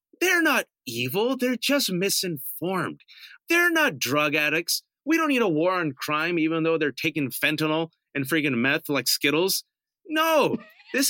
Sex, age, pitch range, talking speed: male, 30-49, 130-180 Hz, 155 wpm